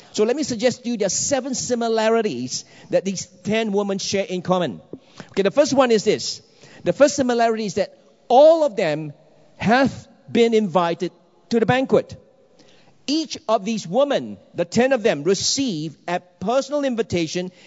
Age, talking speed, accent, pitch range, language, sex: 50-69, 165 wpm, Malaysian, 180-240 Hz, English, male